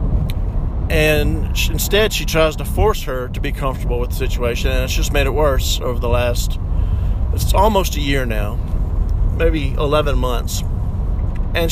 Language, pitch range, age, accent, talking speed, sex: English, 90-135 Hz, 50-69, American, 165 wpm, male